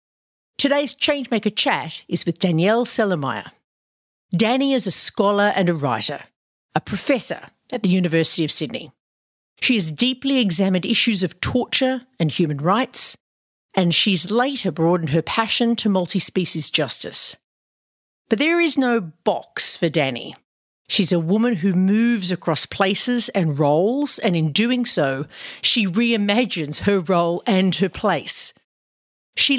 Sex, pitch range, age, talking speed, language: female, 165-235 Hz, 50-69, 140 wpm, English